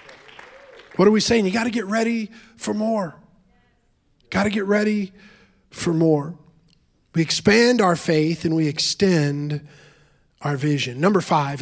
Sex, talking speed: male, 145 wpm